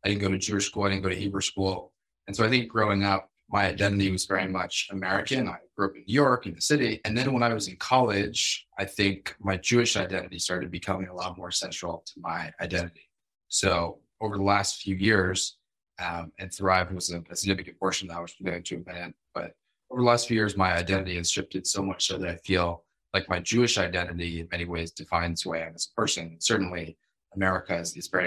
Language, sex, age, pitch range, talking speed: English, male, 20-39, 90-100 Hz, 230 wpm